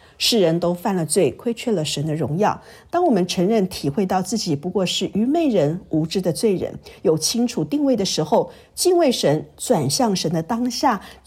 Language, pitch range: Chinese, 170-245 Hz